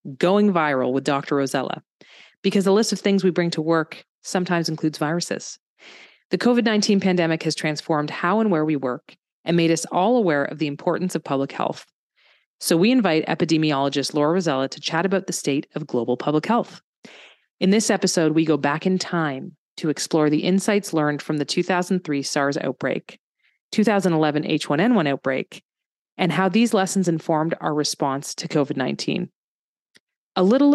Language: English